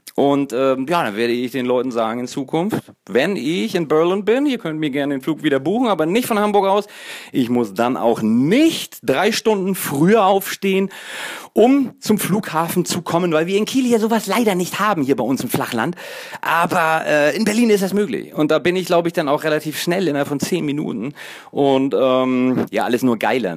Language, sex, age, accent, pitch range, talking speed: English, male, 40-59, German, 130-195 Hz, 215 wpm